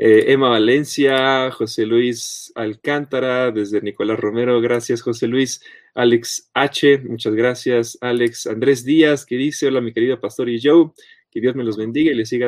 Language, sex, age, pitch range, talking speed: Spanish, male, 30-49, 120-175 Hz, 170 wpm